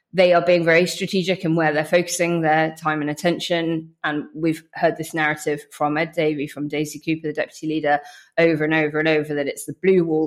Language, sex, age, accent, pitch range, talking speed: English, female, 20-39, British, 150-170 Hz, 215 wpm